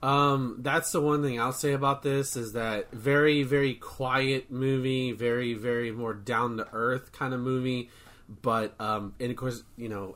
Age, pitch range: 30-49, 110-135 Hz